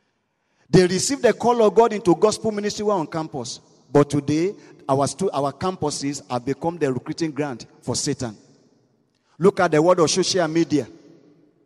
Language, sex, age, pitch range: English, male, 40-59, 145-190 Hz